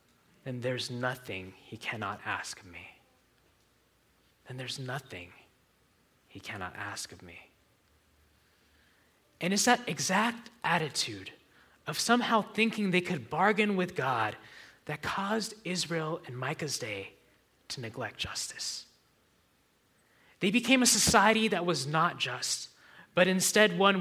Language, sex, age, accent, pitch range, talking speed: English, male, 20-39, American, 130-200 Hz, 120 wpm